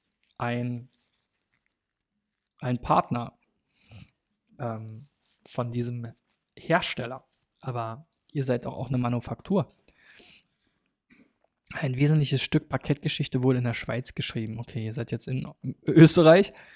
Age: 20-39